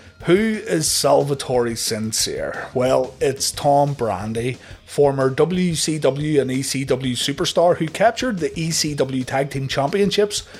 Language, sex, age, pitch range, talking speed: English, male, 30-49, 120-150 Hz, 115 wpm